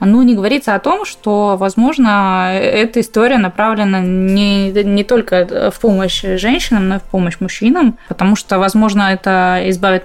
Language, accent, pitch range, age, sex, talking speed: Russian, native, 195-235 Hz, 20-39, female, 155 wpm